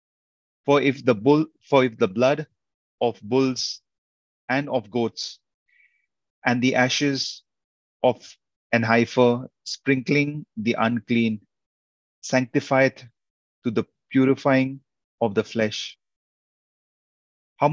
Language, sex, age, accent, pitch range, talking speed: English, male, 30-49, Indian, 105-135 Hz, 100 wpm